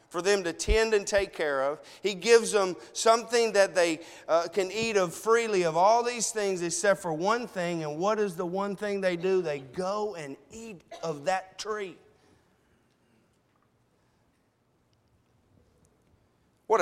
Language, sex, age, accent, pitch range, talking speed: English, male, 40-59, American, 160-210 Hz, 155 wpm